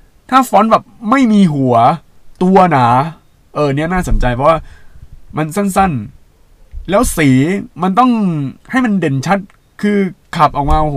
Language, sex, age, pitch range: Thai, male, 20-39, 115-160 Hz